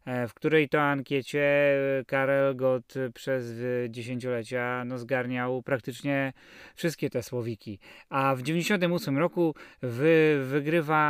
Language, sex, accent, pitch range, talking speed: Polish, male, native, 135-175 Hz, 95 wpm